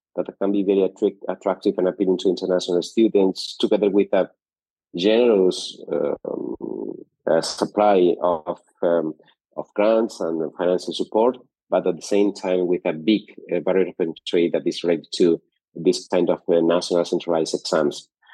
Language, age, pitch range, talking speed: English, 30-49, 90-105 Hz, 150 wpm